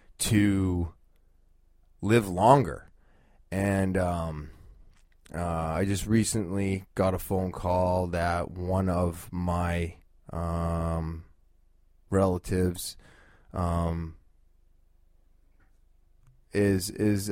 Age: 20-39